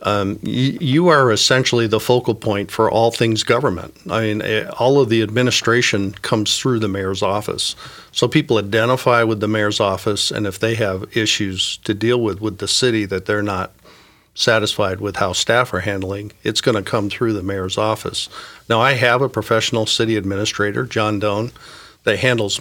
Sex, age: male, 50-69